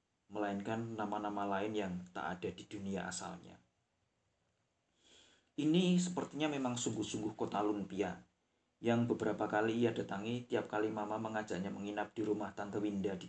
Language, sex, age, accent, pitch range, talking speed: Indonesian, male, 40-59, native, 100-120 Hz, 135 wpm